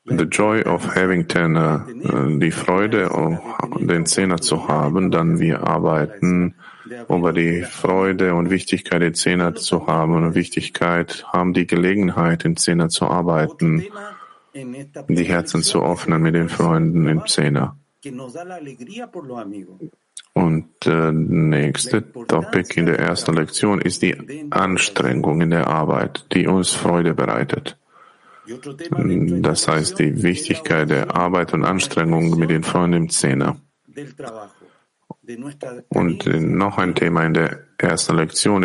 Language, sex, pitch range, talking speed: English, male, 85-140 Hz, 125 wpm